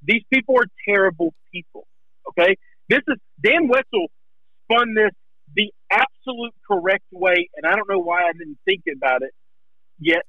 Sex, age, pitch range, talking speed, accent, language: male, 50-69, 170-280 Hz, 155 wpm, American, English